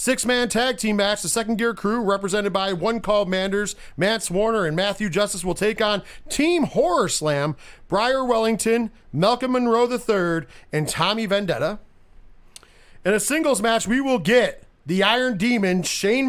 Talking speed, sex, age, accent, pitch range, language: 160 wpm, male, 40-59, American, 150-235 Hz, English